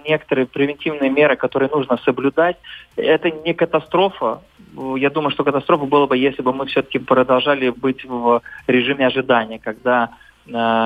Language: Russian